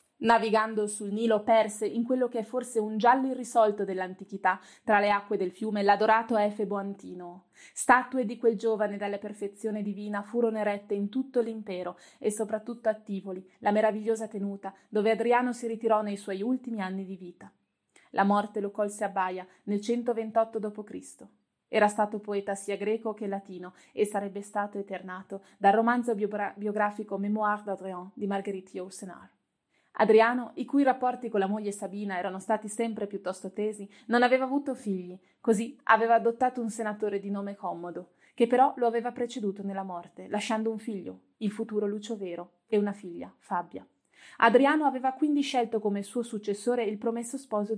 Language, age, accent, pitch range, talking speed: Italian, 20-39, native, 200-230 Hz, 165 wpm